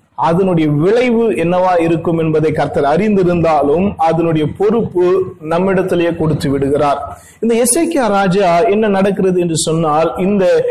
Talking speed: 90 wpm